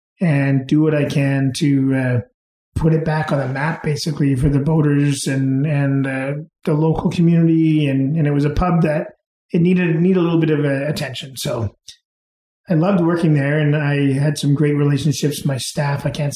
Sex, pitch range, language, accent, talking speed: male, 140-160 Hz, English, American, 200 wpm